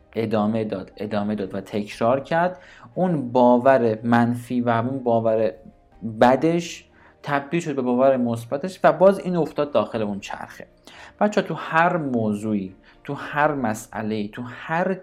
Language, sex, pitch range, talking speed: Persian, male, 105-145 Hz, 140 wpm